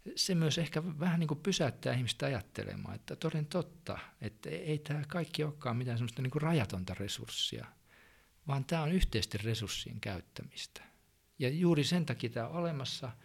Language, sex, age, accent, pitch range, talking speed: Finnish, male, 50-69, native, 110-150 Hz, 155 wpm